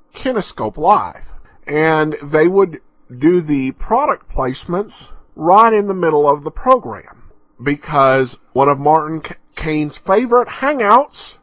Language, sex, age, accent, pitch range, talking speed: English, male, 50-69, American, 140-190 Hz, 125 wpm